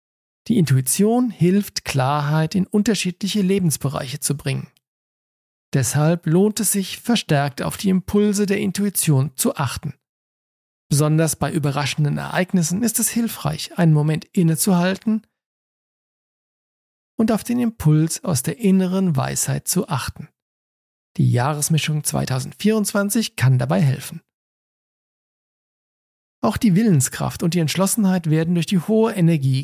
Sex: male